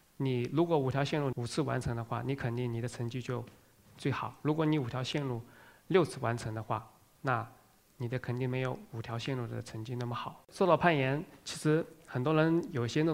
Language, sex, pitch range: Chinese, male, 120-145 Hz